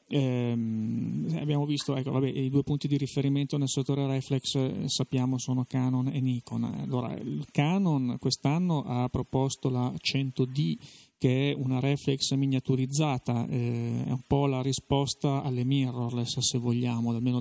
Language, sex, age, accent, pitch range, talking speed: Italian, male, 30-49, native, 125-145 Hz, 145 wpm